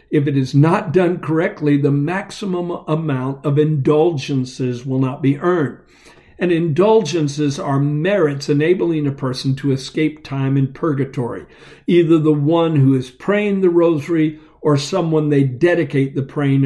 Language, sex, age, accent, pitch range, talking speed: English, male, 50-69, American, 140-175 Hz, 150 wpm